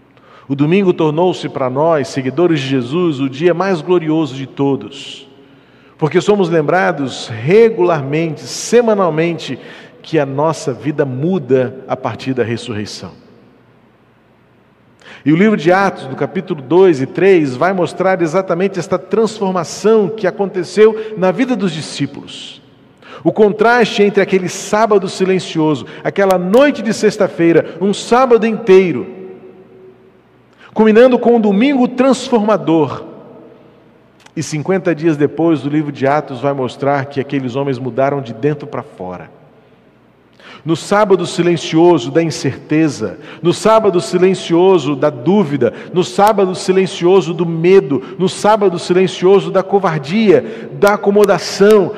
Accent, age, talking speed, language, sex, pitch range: Brazilian, 40-59, 125 wpm, Portuguese, male, 145-195 Hz